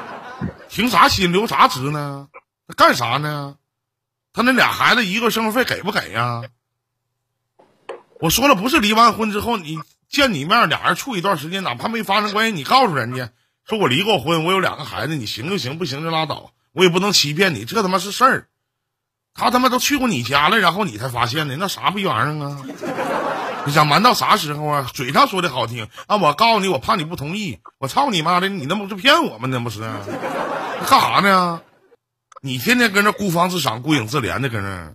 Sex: male